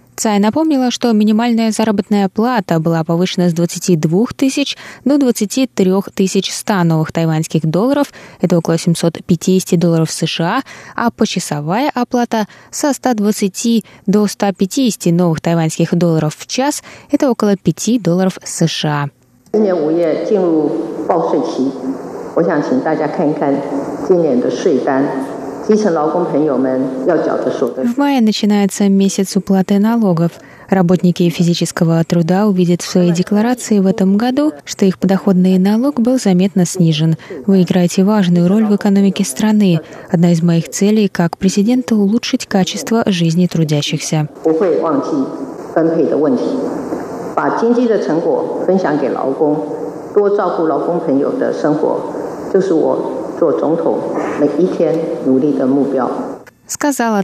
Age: 20-39